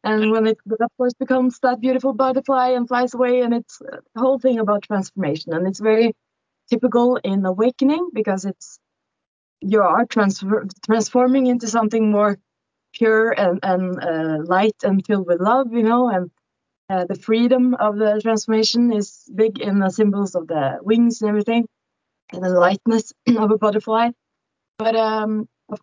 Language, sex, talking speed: English, female, 160 wpm